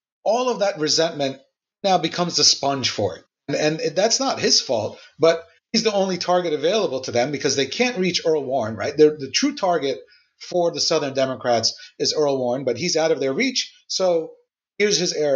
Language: English